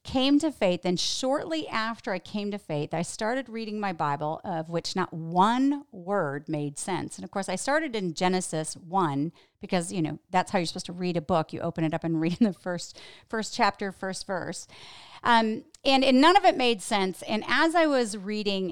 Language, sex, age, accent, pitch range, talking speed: English, female, 40-59, American, 160-215 Hz, 210 wpm